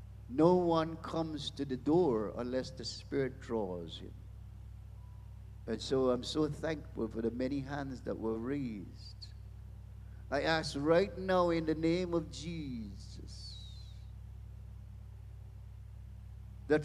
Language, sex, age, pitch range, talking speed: English, male, 50-69, 100-130 Hz, 120 wpm